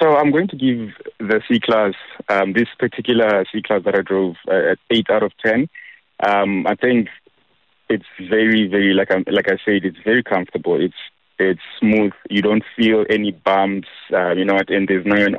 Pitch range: 95-105 Hz